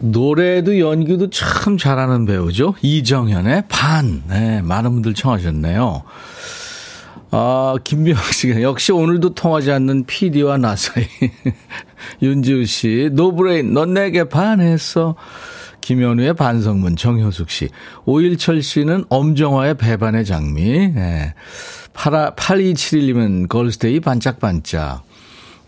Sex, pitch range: male, 100-155 Hz